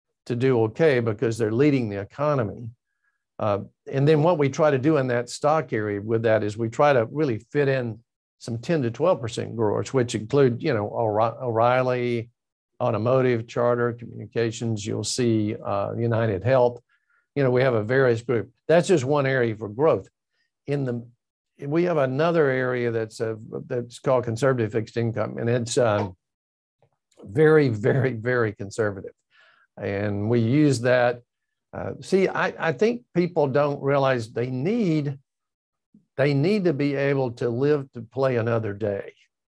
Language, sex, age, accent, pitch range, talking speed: English, male, 60-79, American, 115-140 Hz, 160 wpm